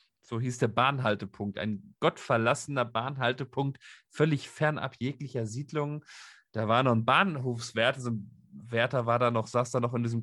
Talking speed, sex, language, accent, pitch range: 160 wpm, male, German, German, 110-135 Hz